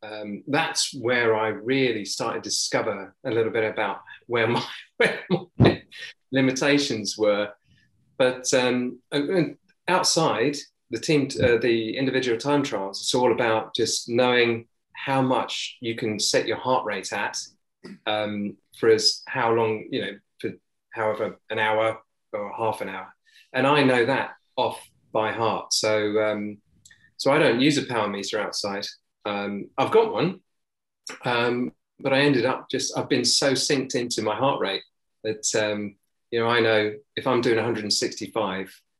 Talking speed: 155 wpm